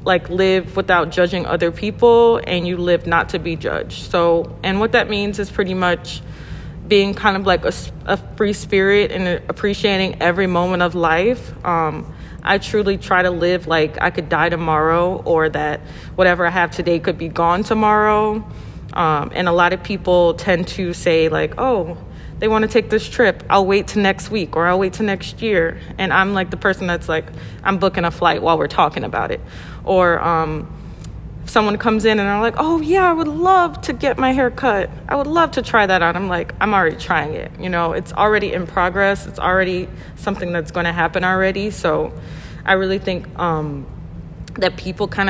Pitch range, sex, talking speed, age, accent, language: 175-200 Hz, female, 205 wpm, 20-39, American, English